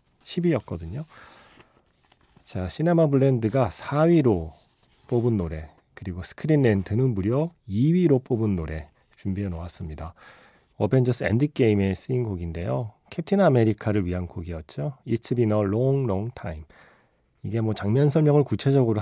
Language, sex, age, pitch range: Korean, male, 40-59, 95-135 Hz